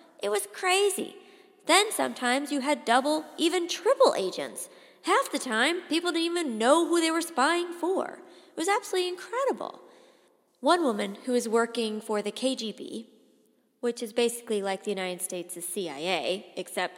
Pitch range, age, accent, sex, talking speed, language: 195-300 Hz, 30-49, American, female, 160 wpm, English